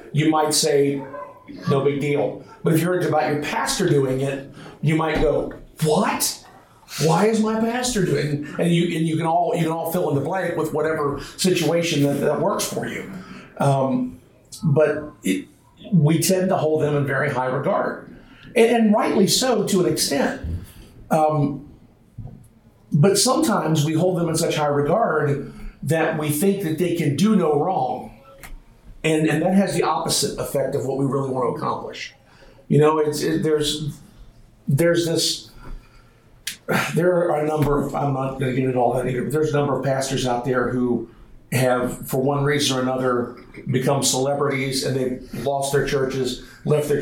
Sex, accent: male, American